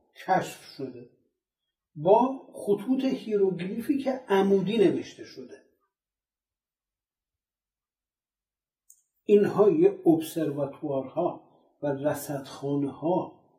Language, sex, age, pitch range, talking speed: Persian, male, 60-79, 165-250 Hz, 55 wpm